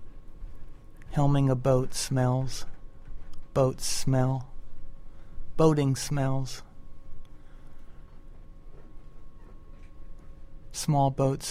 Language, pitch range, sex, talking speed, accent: English, 115-135 Hz, male, 50 wpm, American